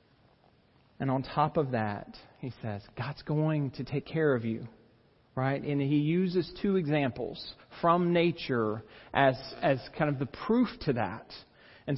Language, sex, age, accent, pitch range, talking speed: English, male, 40-59, American, 130-170 Hz, 155 wpm